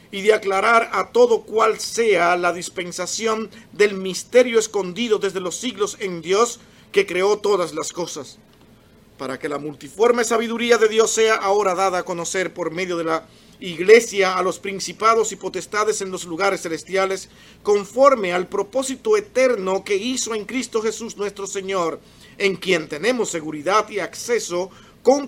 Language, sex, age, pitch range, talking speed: Spanish, male, 50-69, 175-220 Hz, 155 wpm